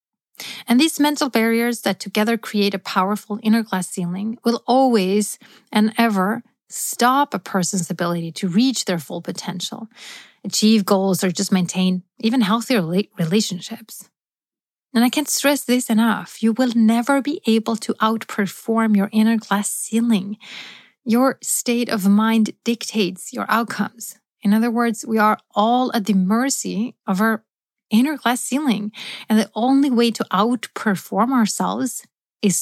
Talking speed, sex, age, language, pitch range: 145 wpm, female, 30-49, English, 195-235 Hz